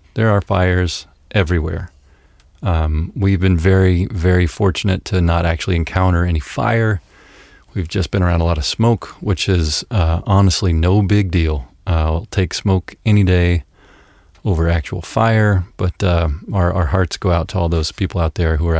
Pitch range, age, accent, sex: 85-100 Hz, 30-49, American, male